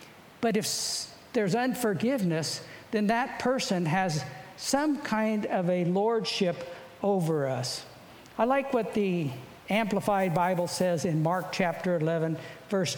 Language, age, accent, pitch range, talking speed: English, 60-79, American, 170-220 Hz, 125 wpm